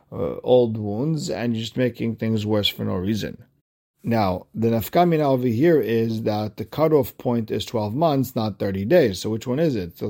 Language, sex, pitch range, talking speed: English, male, 105-135 Hz, 195 wpm